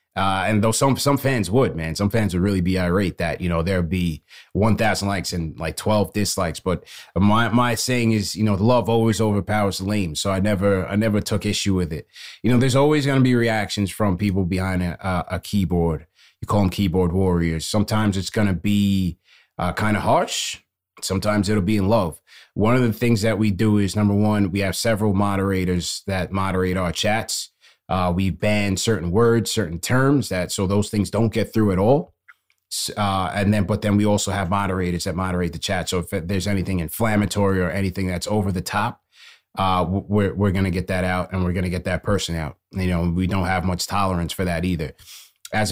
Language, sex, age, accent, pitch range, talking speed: English, male, 30-49, American, 90-105 Hz, 220 wpm